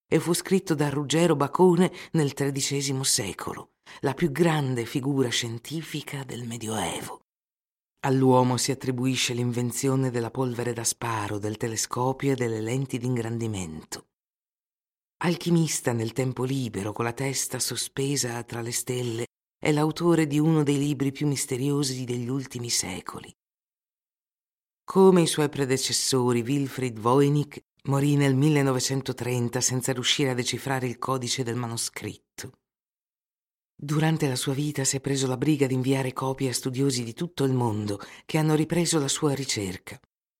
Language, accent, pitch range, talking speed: Italian, native, 120-145 Hz, 140 wpm